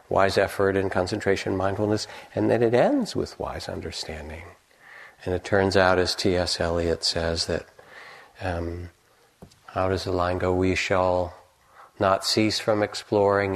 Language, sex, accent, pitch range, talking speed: English, male, American, 90-105 Hz, 145 wpm